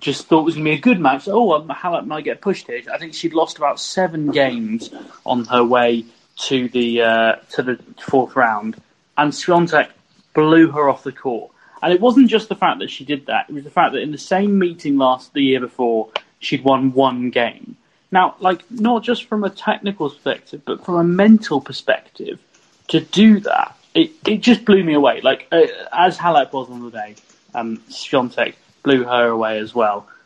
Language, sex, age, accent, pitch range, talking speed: English, male, 30-49, British, 120-185 Hz, 210 wpm